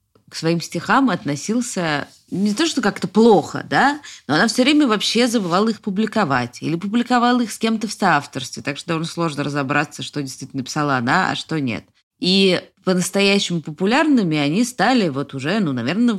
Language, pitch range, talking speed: Russian, 145-205 Hz, 170 wpm